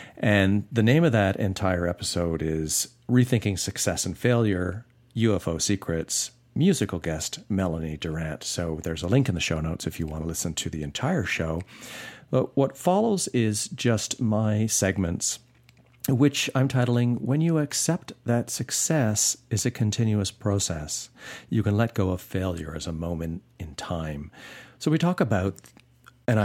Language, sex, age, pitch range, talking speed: English, male, 50-69, 85-115 Hz, 160 wpm